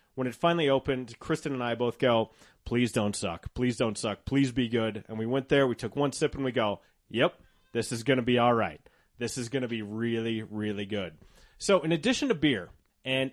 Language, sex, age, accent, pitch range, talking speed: English, male, 30-49, American, 115-160 Hz, 230 wpm